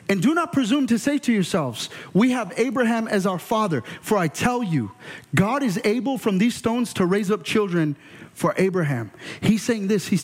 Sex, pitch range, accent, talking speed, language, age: male, 150-210 Hz, American, 200 wpm, English, 30-49